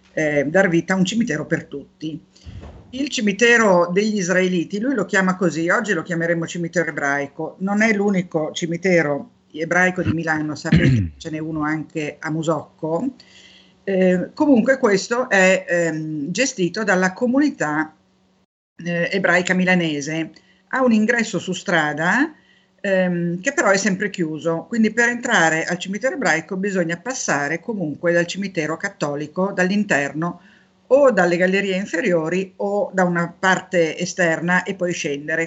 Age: 50-69